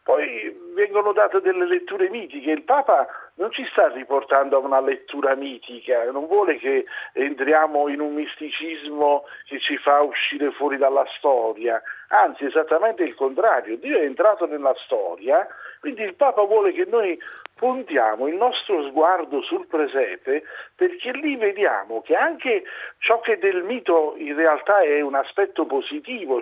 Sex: male